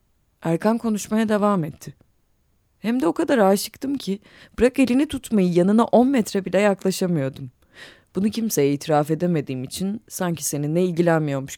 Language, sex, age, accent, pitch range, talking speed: Turkish, female, 30-49, native, 150-210 Hz, 135 wpm